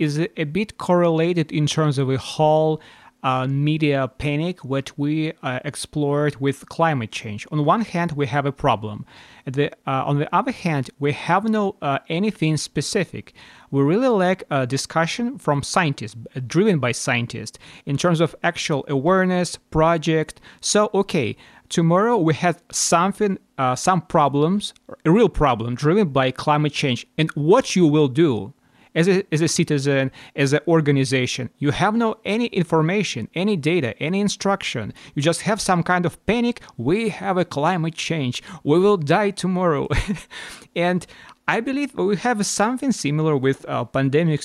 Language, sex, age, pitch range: English, male, 30-49, 140-180 Hz